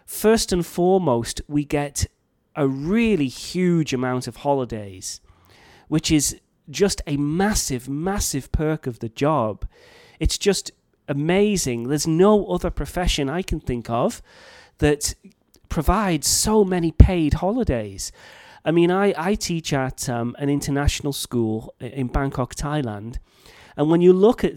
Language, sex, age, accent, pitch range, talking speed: English, male, 30-49, British, 135-185 Hz, 135 wpm